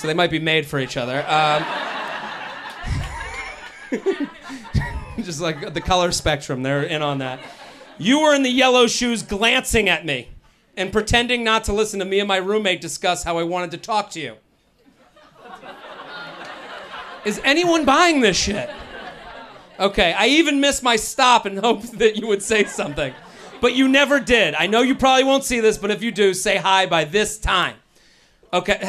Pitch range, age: 185-265 Hz, 40-59